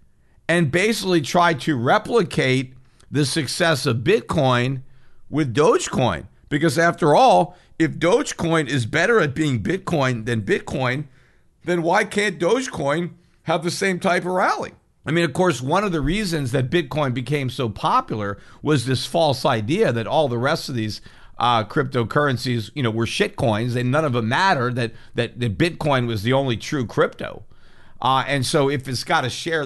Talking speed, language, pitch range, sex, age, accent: 170 wpm, English, 115-155 Hz, male, 50-69, American